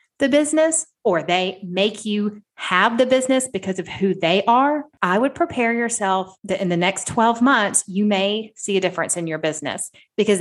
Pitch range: 175-235 Hz